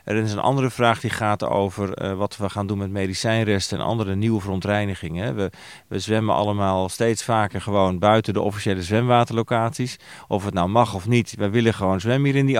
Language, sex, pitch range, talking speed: Dutch, male, 95-120 Hz, 205 wpm